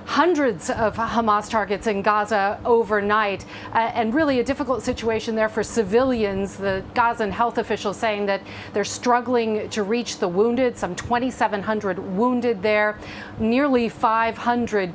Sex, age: female, 40-59